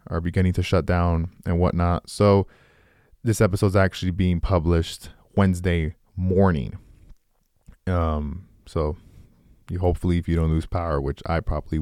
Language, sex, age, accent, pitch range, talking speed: English, male, 20-39, American, 85-105 Hz, 140 wpm